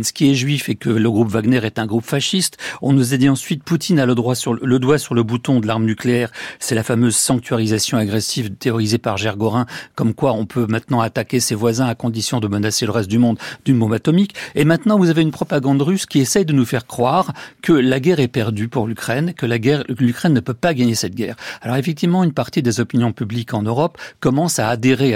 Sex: male